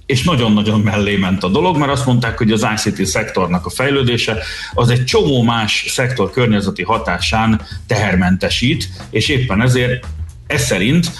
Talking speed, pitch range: 150 wpm, 95-120 Hz